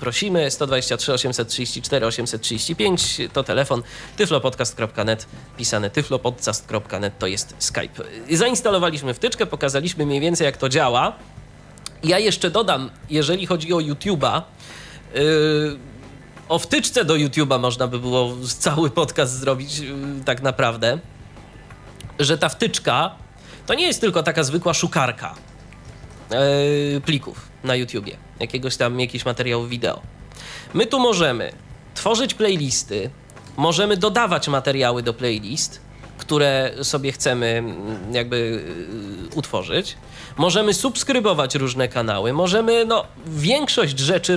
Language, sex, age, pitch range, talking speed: Polish, male, 20-39, 125-175 Hz, 110 wpm